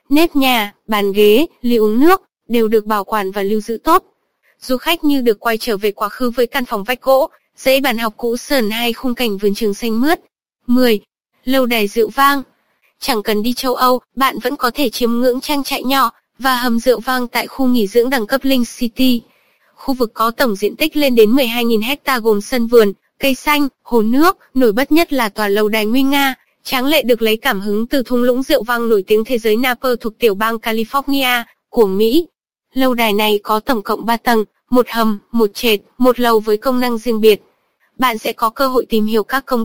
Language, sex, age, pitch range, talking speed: Vietnamese, female, 20-39, 220-270 Hz, 225 wpm